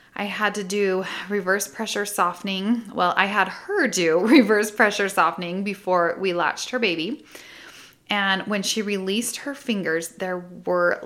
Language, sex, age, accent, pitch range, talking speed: English, female, 20-39, American, 175-220 Hz, 150 wpm